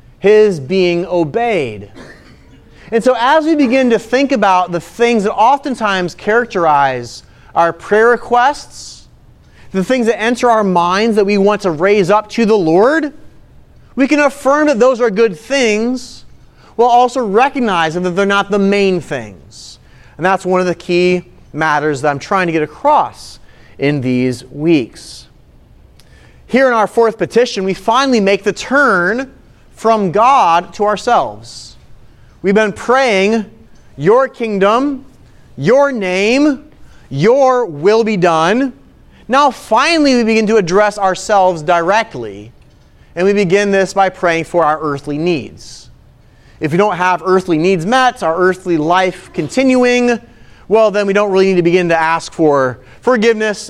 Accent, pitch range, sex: American, 165-230 Hz, male